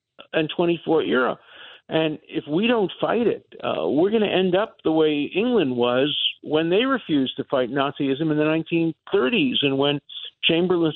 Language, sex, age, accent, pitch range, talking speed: English, male, 50-69, American, 135-180 Hz, 170 wpm